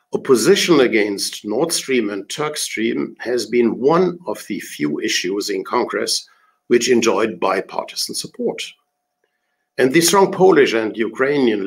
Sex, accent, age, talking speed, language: male, German, 60-79, 135 wpm, Turkish